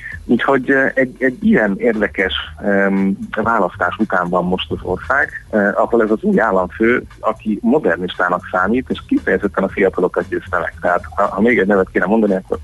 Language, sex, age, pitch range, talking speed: Hungarian, male, 30-49, 90-105 Hz, 170 wpm